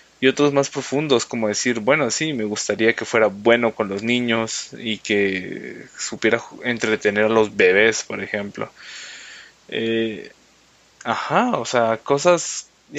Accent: Mexican